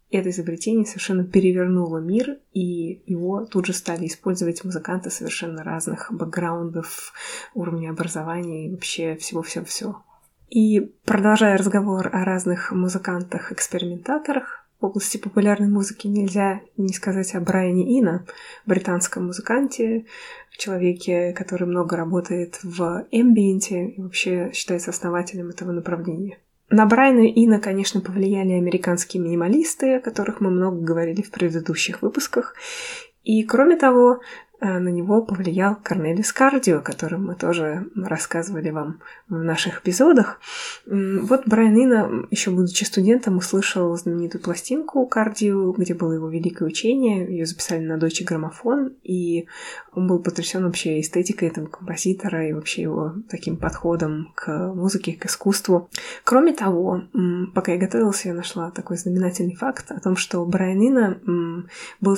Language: Russian